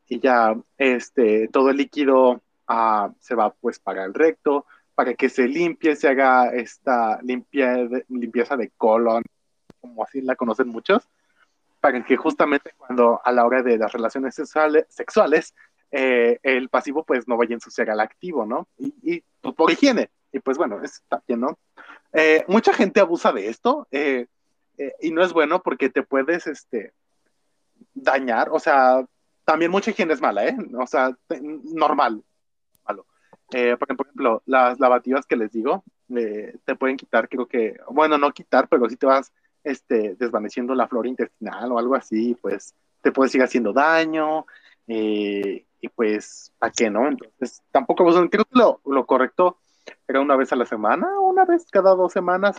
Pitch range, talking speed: 125-160 Hz, 175 wpm